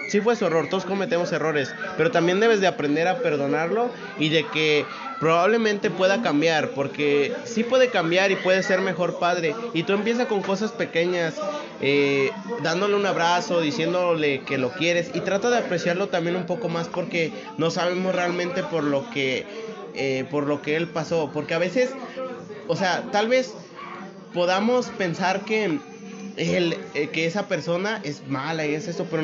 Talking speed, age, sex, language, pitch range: 170 wpm, 30-49, male, Spanish, 150-190 Hz